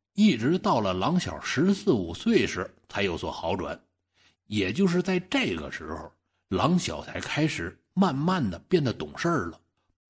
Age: 60-79